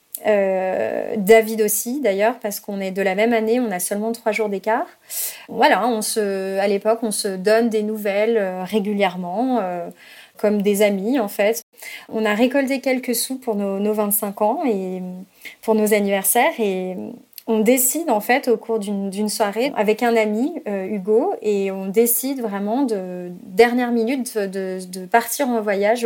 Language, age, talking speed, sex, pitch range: French, 20-39, 175 wpm, female, 200-235 Hz